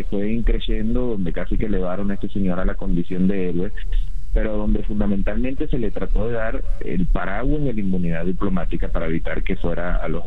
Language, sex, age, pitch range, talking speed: Spanish, male, 30-49, 85-105 Hz, 205 wpm